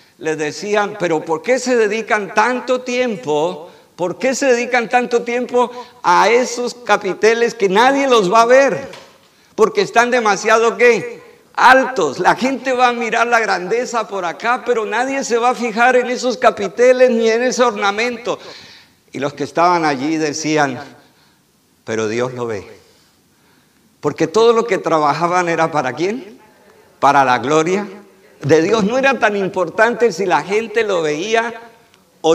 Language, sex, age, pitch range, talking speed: Spanish, male, 50-69, 160-240 Hz, 155 wpm